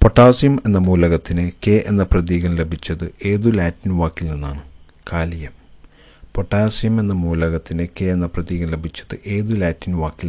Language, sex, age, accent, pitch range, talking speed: Malayalam, male, 50-69, native, 80-100 Hz, 130 wpm